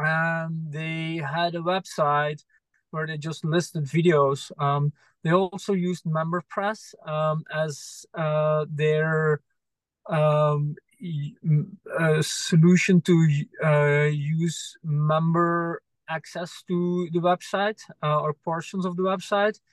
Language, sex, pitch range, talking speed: English, male, 155-175 Hz, 115 wpm